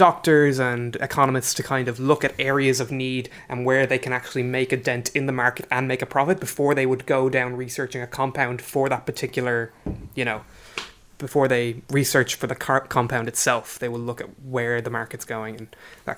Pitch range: 125-140 Hz